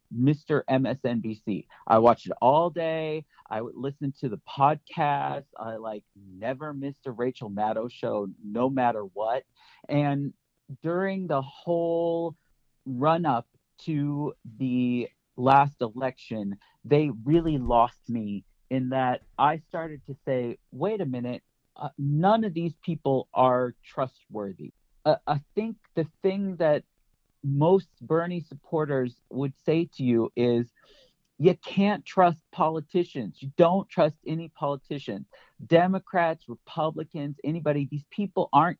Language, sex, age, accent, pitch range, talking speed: English, male, 40-59, American, 130-165 Hz, 130 wpm